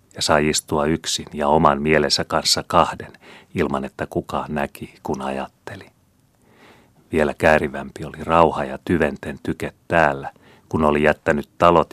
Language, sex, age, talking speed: Finnish, male, 40-59, 135 wpm